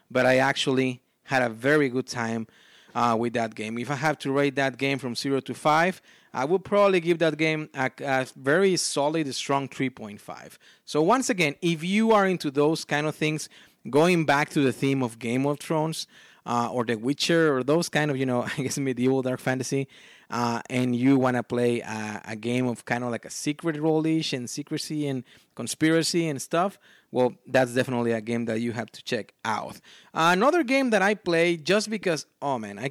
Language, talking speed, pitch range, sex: English, 210 wpm, 120-150 Hz, male